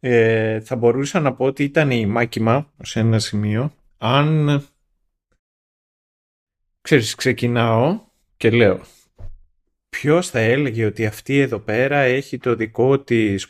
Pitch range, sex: 100-130 Hz, male